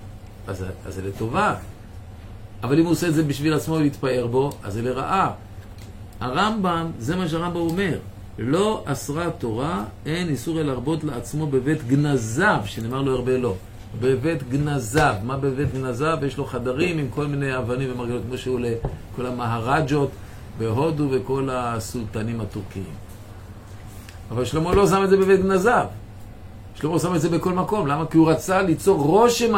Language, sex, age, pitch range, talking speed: Hebrew, male, 50-69, 100-150 Hz, 155 wpm